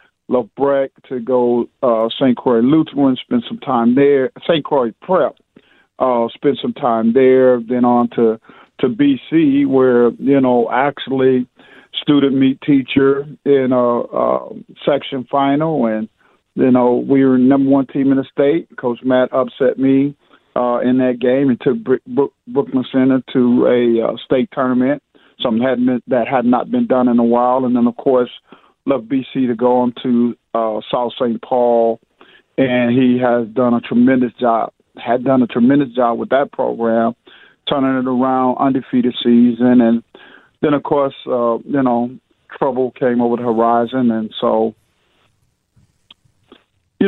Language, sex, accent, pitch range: English, male, American, 120-135 Hz